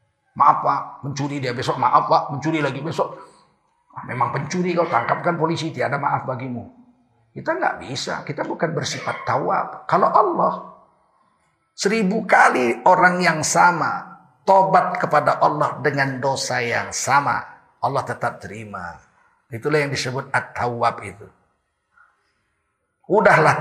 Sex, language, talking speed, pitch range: male, Indonesian, 120 wpm, 130-175 Hz